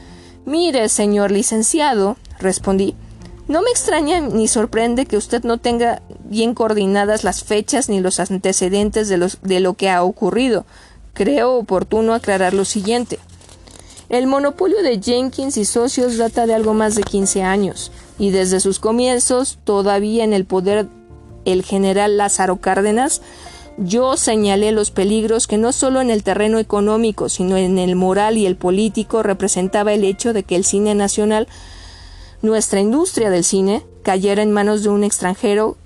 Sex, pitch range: female, 190-225 Hz